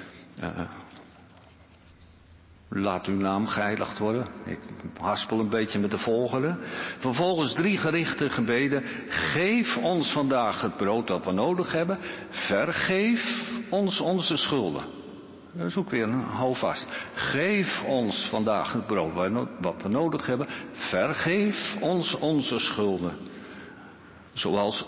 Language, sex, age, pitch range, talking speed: Dutch, male, 60-79, 105-155 Hz, 120 wpm